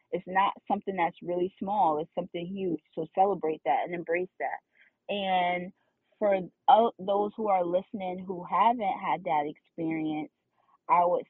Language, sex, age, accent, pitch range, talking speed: English, female, 20-39, American, 160-180 Hz, 150 wpm